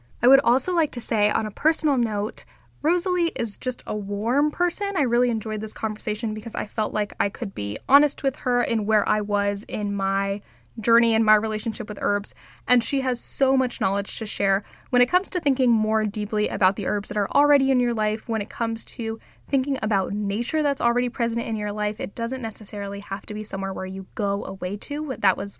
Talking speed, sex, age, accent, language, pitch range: 220 wpm, female, 10-29, American, English, 210-245 Hz